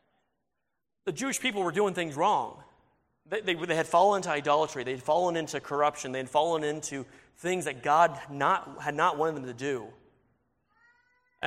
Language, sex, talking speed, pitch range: English, male, 180 wpm, 145-185 Hz